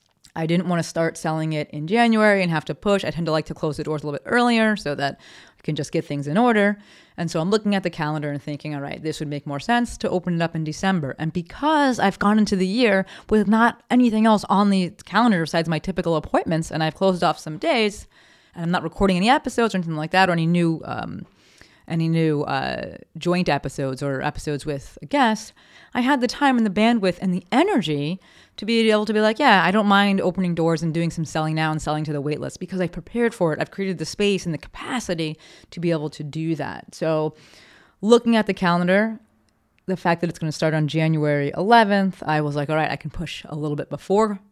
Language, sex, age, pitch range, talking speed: English, female, 30-49, 155-210 Hz, 245 wpm